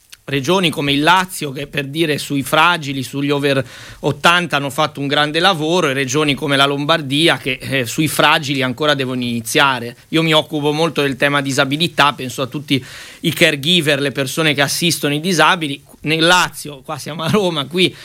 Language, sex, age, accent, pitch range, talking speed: Italian, male, 30-49, native, 145-175 Hz, 180 wpm